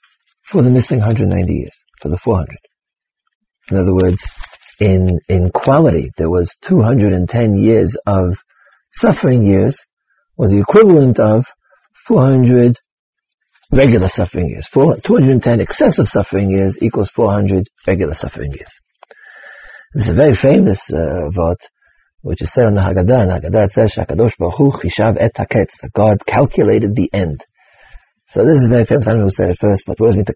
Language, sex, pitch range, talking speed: English, male, 100-135 Hz, 155 wpm